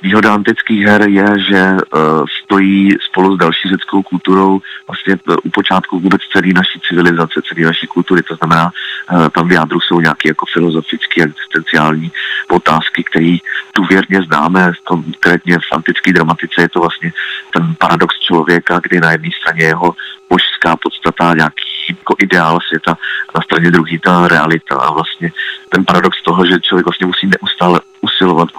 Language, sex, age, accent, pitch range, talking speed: Czech, male, 30-49, native, 80-95 Hz, 160 wpm